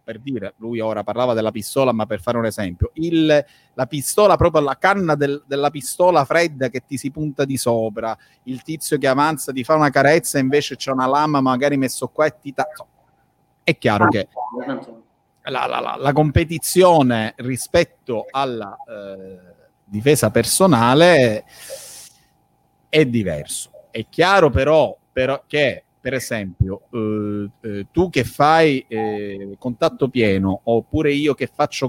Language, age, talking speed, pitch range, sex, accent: Italian, 30-49, 140 wpm, 115-155 Hz, male, native